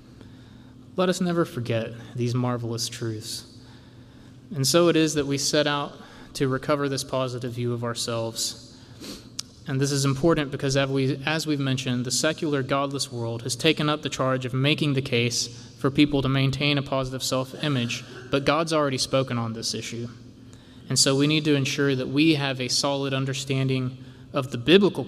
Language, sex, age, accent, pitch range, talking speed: English, male, 20-39, American, 120-140 Hz, 175 wpm